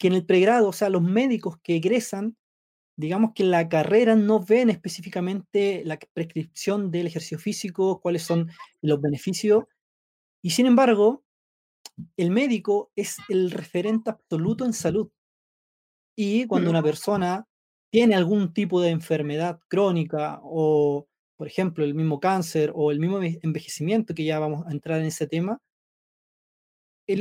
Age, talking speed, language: 30-49, 150 wpm, Spanish